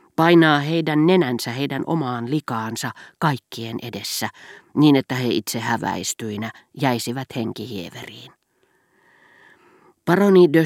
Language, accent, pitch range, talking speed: Finnish, native, 115-155 Hz, 95 wpm